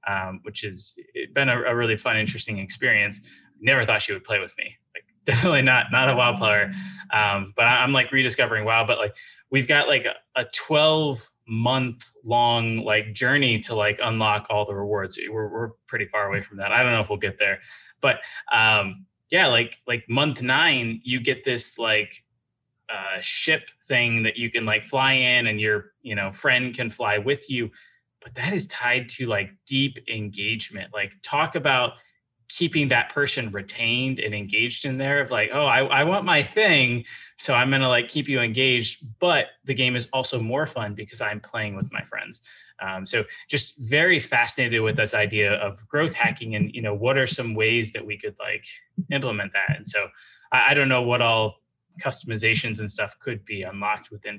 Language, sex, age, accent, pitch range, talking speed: English, male, 20-39, American, 105-135 Hz, 195 wpm